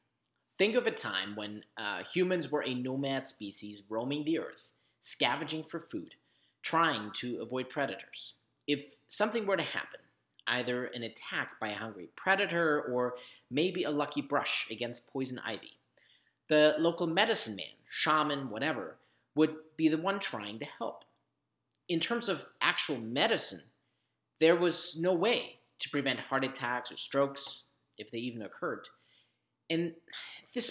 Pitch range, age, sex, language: 120-170 Hz, 30-49, male, English